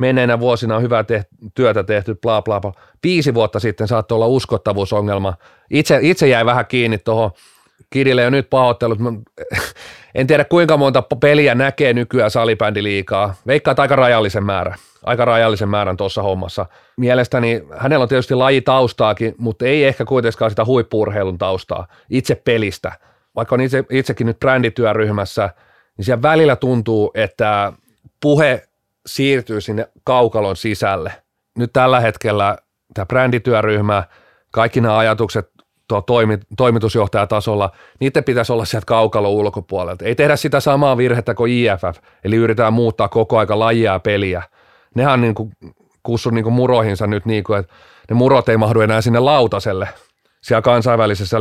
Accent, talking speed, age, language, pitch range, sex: native, 145 wpm, 30-49, Finnish, 105-125 Hz, male